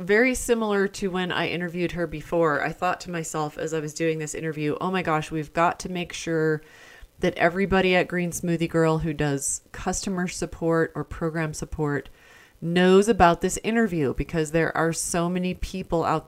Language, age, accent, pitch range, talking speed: English, 30-49, American, 155-185 Hz, 185 wpm